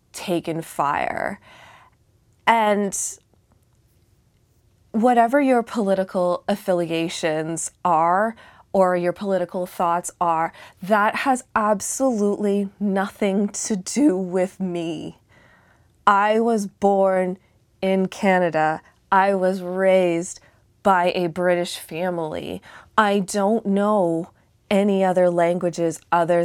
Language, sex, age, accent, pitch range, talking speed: English, female, 20-39, American, 175-205 Hz, 90 wpm